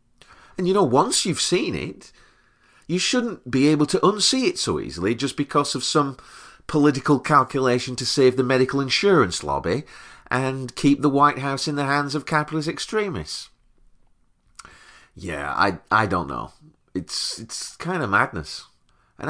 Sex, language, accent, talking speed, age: male, English, British, 155 wpm, 40-59